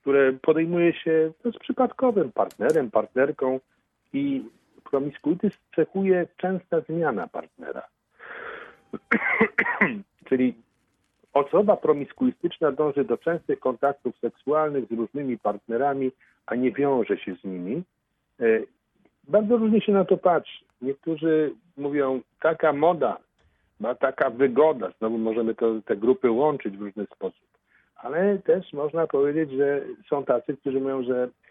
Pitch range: 110-160 Hz